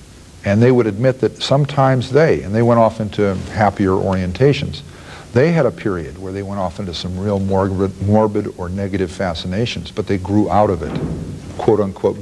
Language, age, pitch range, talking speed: English, 60-79, 90-105 Hz, 175 wpm